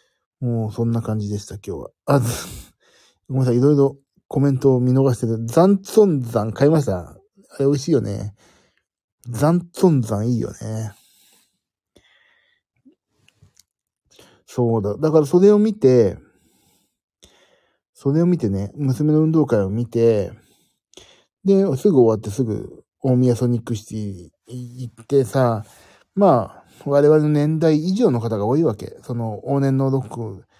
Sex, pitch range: male, 110-160 Hz